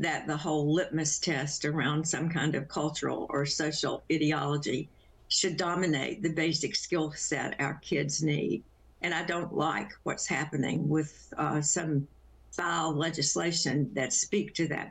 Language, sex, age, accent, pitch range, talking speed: English, female, 50-69, American, 150-170 Hz, 150 wpm